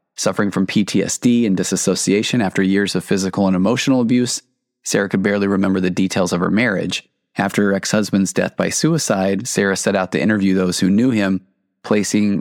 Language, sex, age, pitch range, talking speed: English, male, 20-39, 95-105 Hz, 180 wpm